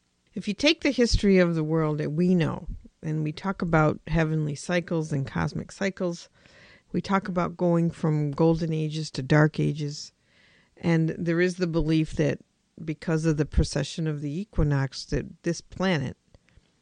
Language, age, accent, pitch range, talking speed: English, 50-69, American, 150-185 Hz, 165 wpm